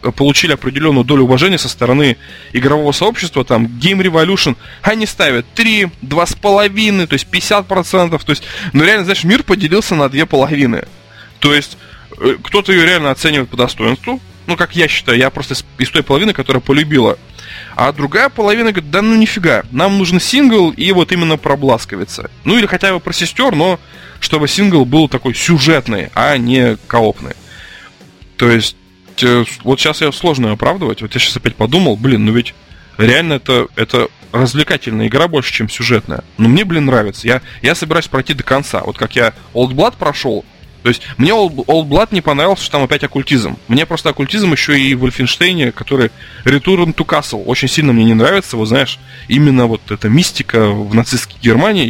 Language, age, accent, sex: Russian, 20-39, native, male